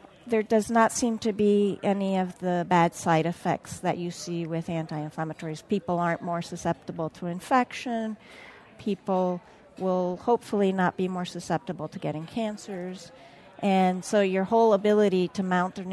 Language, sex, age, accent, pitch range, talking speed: English, female, 40-59, American, 180-210 Hz, 155 wpm